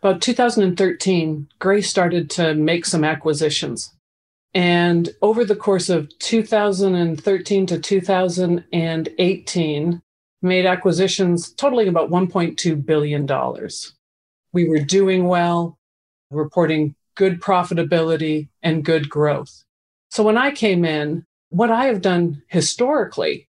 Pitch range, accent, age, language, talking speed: 160-195 Hz, American, 40-59, English, 105 wpm